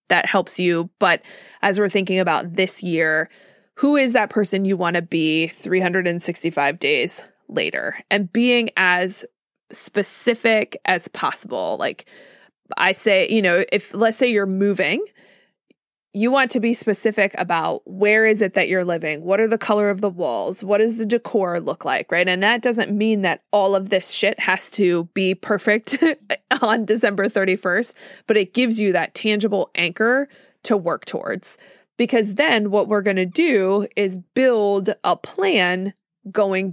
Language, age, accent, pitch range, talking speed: English, 20-39, American, 185-225 Hz, 165 wpm